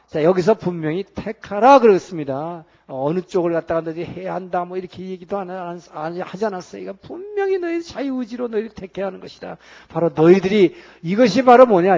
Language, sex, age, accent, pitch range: Korean, male, 50-69, native, 160-200 Hz